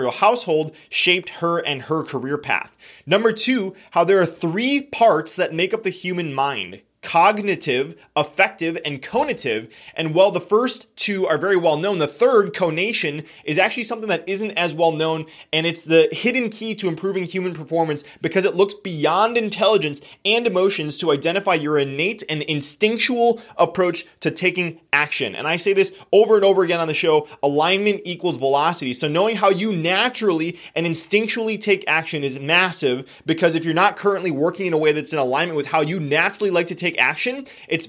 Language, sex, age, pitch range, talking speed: English, male, 20-39, 160-205 Hz, 180 wpm